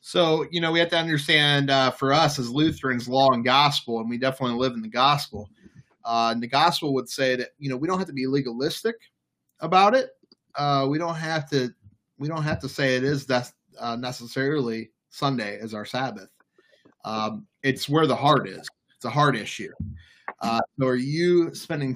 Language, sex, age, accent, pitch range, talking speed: English, male, 30-49, American, 120-145 Hz, 200 wpm